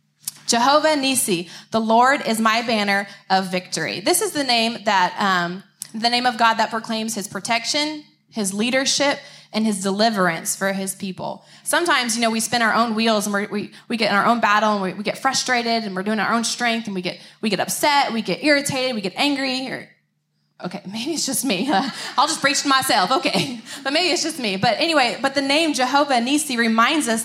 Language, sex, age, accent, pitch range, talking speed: English, female, 20-39, American, 205-270 Hz, 215 wpm